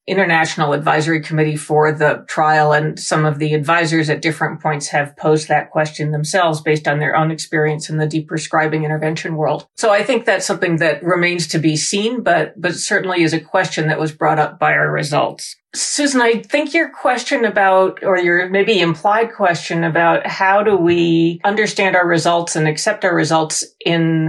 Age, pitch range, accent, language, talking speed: 40-59, 155-180 Hz, American, English, 185 wpm